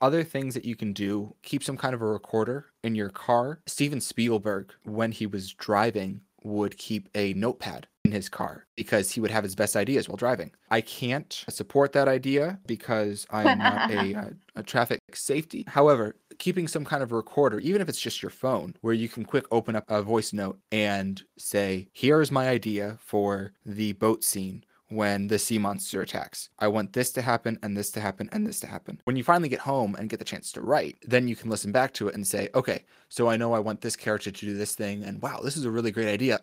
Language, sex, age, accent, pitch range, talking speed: English, male, 20-39, American, 105-130 Hz, 230 wpm